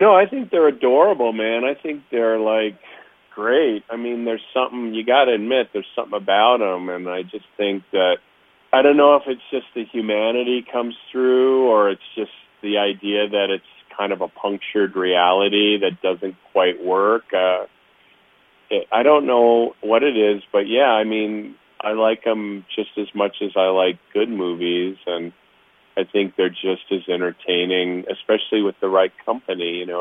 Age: 40-59